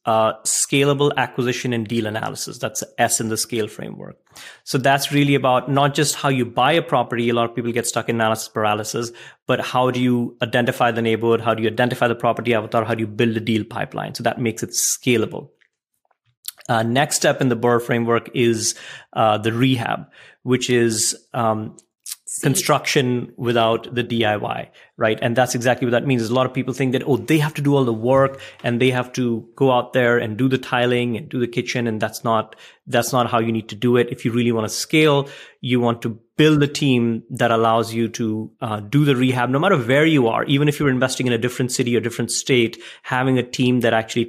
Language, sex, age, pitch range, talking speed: English, male, 30-49, 115-130 Hz, 225 wpm